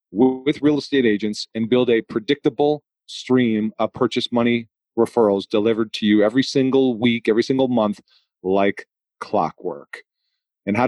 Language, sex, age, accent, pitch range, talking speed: English, male, 40-59, American, 110-135 Hz, 145 wpm